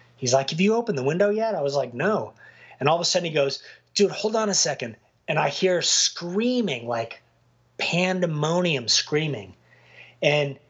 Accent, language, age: American, English, 30-49